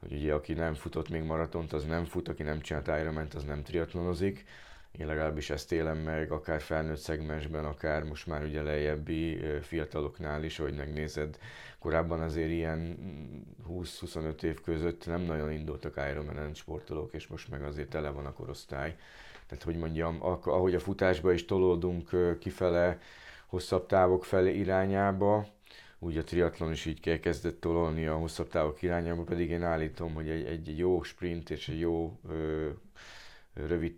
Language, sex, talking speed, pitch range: Hungarian, male, 160 wpm, 75-90 Hz